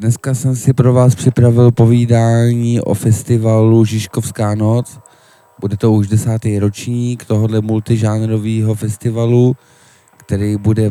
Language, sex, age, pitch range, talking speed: Czech, male, 20-39, 105-120 Hz, 115 wpm